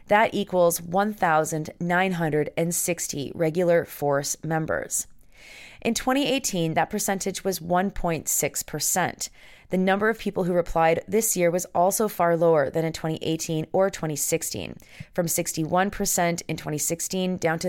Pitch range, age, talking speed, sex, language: 160-190 Hz, 30-49, 120 wpm, female, English